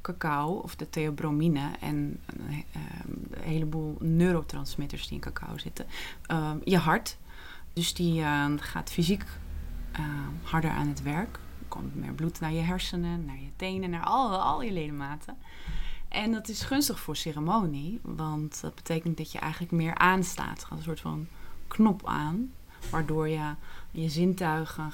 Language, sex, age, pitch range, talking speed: Dutch, female, 20-39, 155-175 Hz, 150 wpm